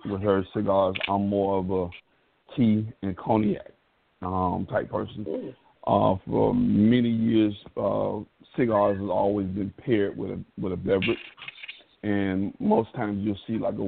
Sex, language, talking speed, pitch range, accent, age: male, English, 150 wpm, 100-110 Hz, American, 50-69